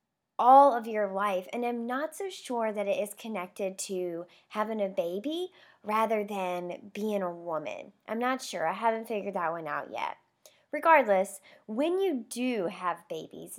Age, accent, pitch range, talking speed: 20-39, American, 195-260 Hz, 170 wpm